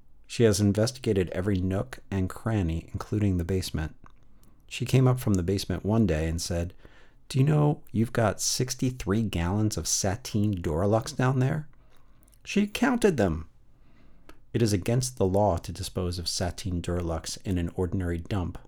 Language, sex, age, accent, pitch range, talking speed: English, male, 50-69, American, 90-115 Hz, 155 wpm